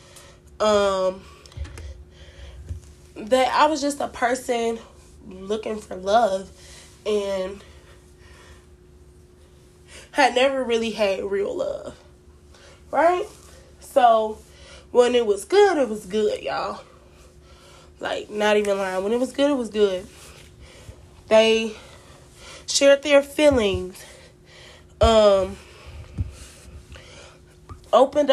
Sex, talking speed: female, 95 wpm